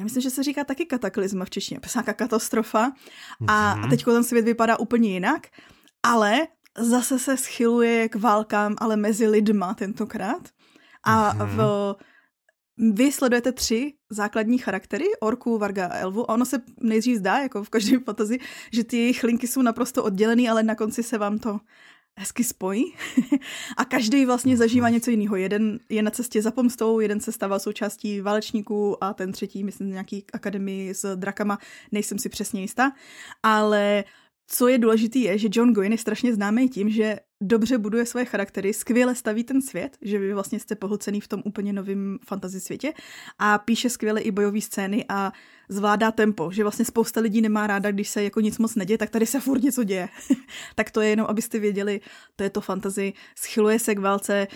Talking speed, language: 180 wpm, Slovak